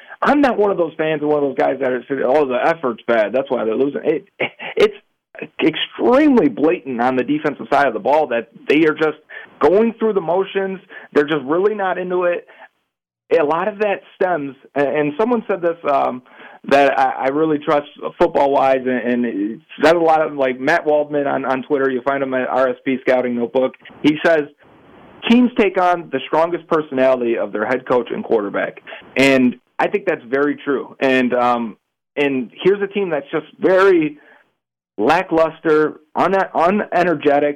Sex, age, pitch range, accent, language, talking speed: male, 40-59, 125-180 Hz, American, English, 180 wpm